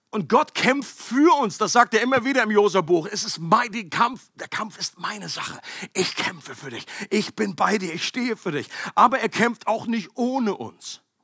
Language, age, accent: German, 50-69, German